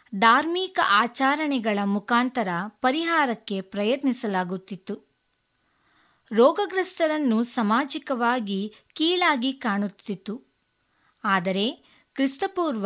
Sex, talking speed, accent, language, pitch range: female, 50 wpm, native, Kannada, 215-290 Hz